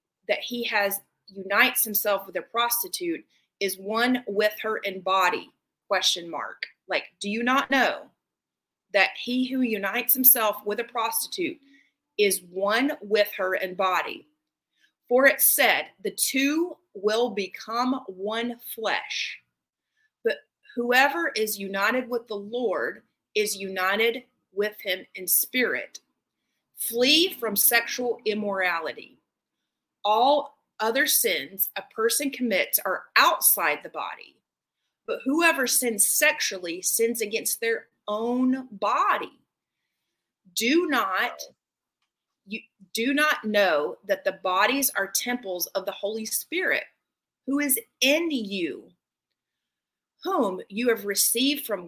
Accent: American